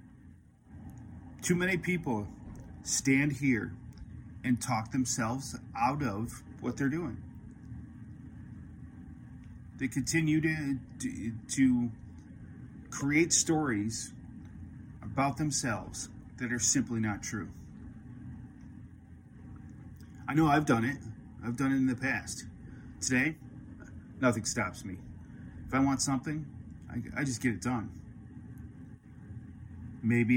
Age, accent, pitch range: 30-49, American, 110-130 Hz